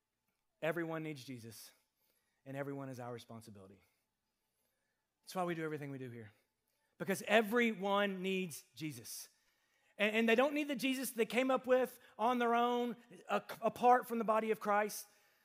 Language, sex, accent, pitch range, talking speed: English, male, American, 170-260 Hz, 155 wpm